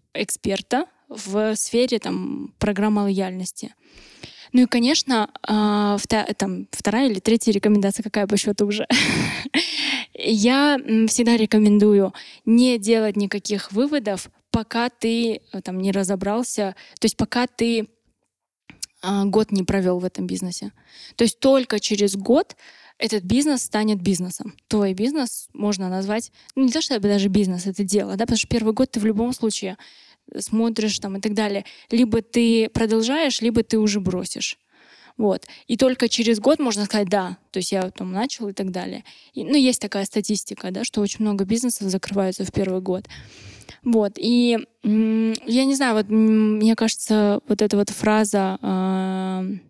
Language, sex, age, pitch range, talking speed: Russian, female, 20-39, 200-235 Hz, 150 wpm